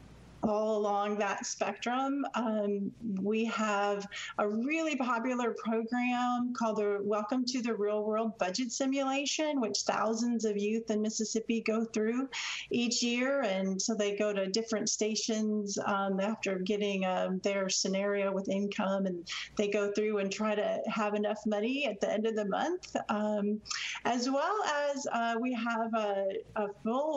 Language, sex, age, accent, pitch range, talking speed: English, female, 40-59, American, 205-230 Hz, 155 wpm